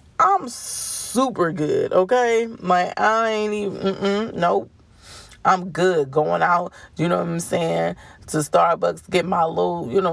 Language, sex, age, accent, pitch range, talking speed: English, female, 30-49, American, 145-195 Hz, 160 wpm